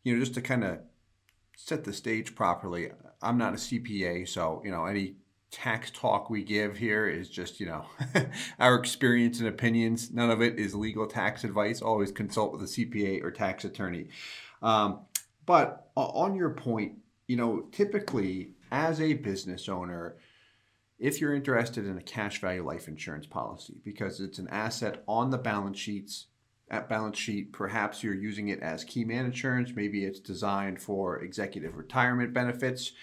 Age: 40-59